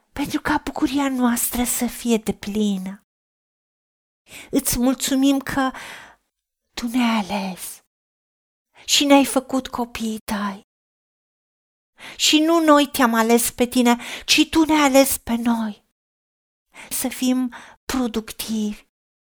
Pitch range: 230-285 Hz